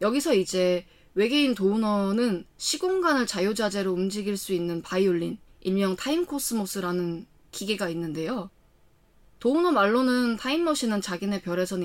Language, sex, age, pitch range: Korean, female, 20-39, 180-245 Hz